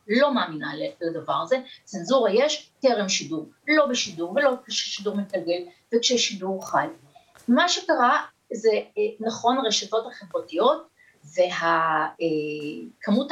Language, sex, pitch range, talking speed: Hebrew, female, 185-250 Hz, 100 wpm